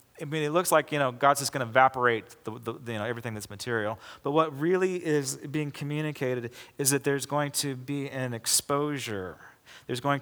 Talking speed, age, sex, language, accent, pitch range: 205 wpm, 40-59, male, English, American, 125-155 Hz